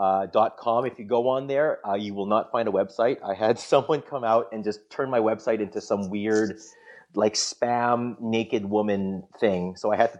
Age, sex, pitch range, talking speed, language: 30-49, male, 95-120 Hz, 210 wpm, English